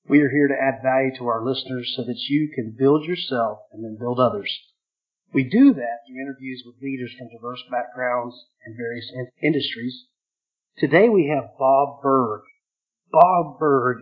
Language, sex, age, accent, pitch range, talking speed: English, male, 50-69, American, 125-150 Hz, 165 wpm